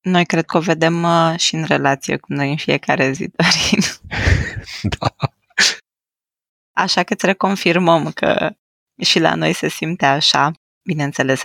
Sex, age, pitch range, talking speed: female, 20-39, 155-190 Hz, 140 wpm